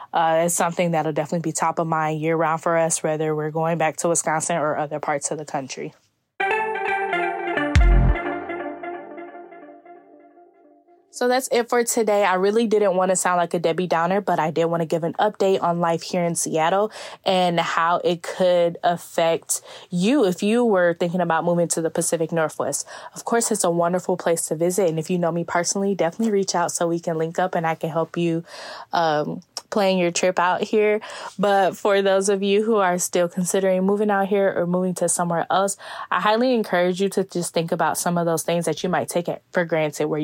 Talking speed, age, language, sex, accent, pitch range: 210 wpm, 10-29, English, female, American, 170-200 Hz